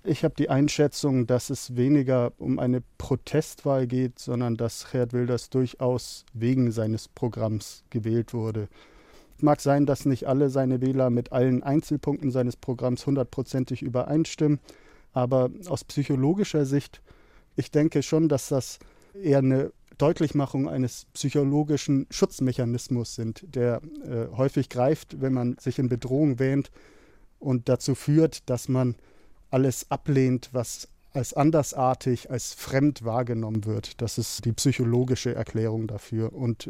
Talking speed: 135 wpm